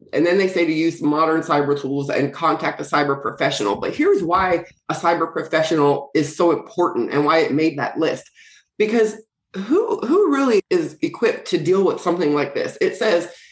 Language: English